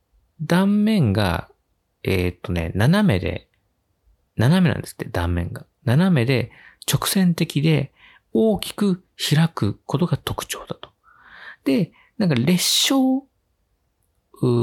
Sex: male